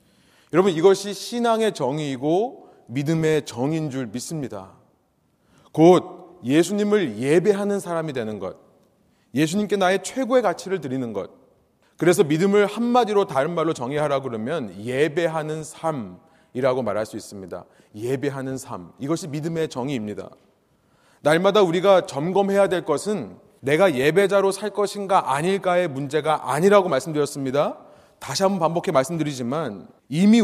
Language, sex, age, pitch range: Korean, male, 30-49, 135-195 Hz